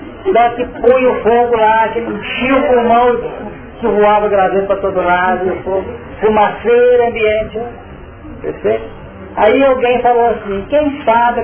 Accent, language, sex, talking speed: Brazilian, Portuguese, male, 150 wpm